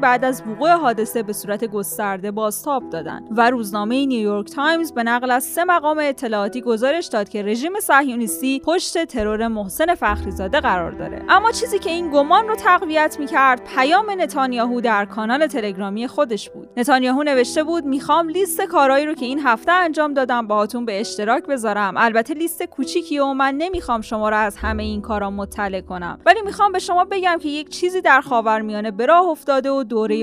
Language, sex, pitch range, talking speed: Persian, female, 230-320 Hz, 185 wpm